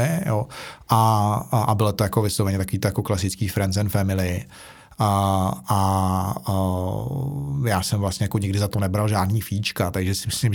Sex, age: male, 30-49